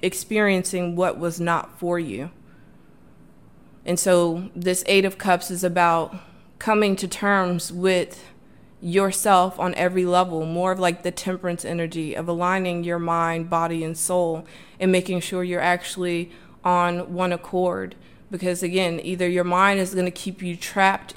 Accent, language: American, English